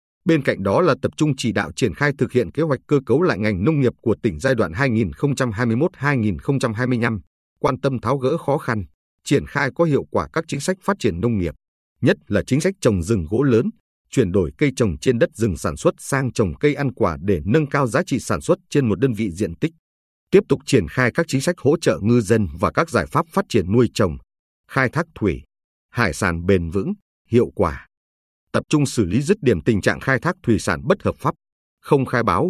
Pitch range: 100-140 Hz